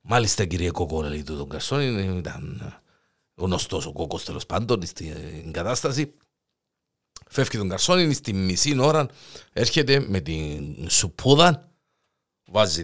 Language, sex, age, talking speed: Greek, male, 50-69, 115 wpm